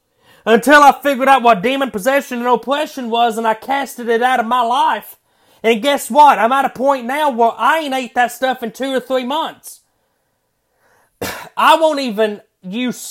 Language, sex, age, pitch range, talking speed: English, male, 30-49, 215-275 Hz, 190 wpm